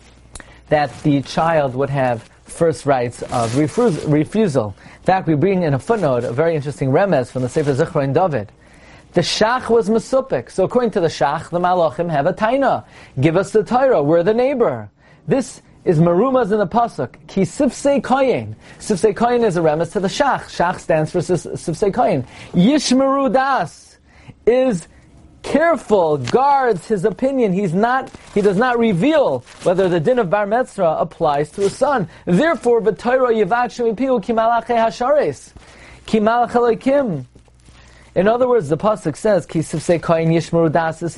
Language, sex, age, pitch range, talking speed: English, male, 30-49, 160-235 Hz, 155 wpm